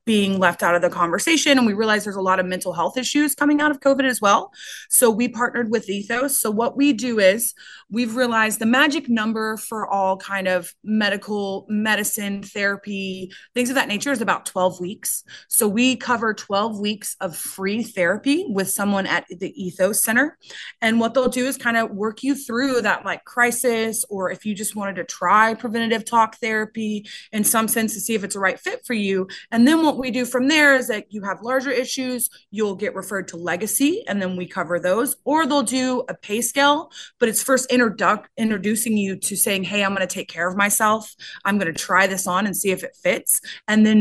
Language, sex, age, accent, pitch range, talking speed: English, female, 20-39, American, 195-245 Hz, 215 wpm